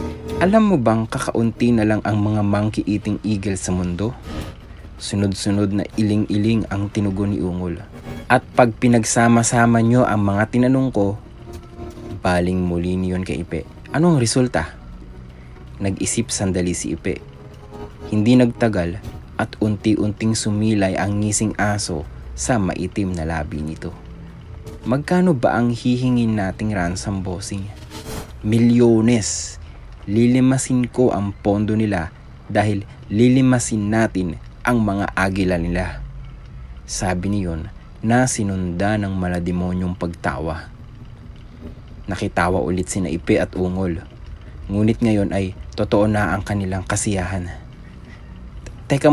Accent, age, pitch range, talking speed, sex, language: Filipino, 30-49, 90-115 Hz, 115 wpm, male, English